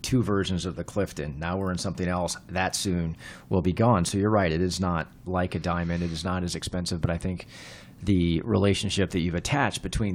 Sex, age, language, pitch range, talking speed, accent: male, 40-59, English, 85-100 Hz, 225 wpm, American